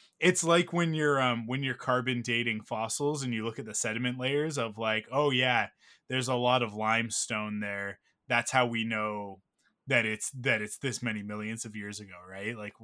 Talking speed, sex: 200 wpm, male